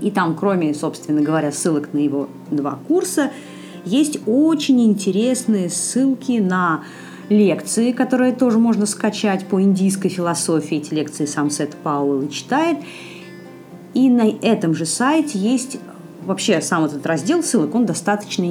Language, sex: Russian, female